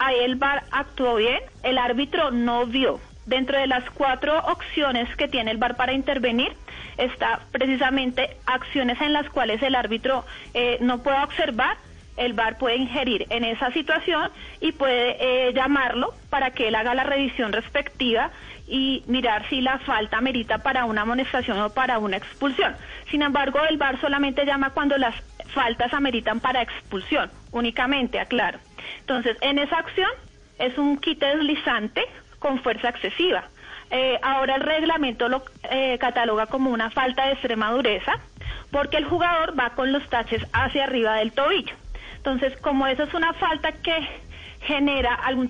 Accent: Colombian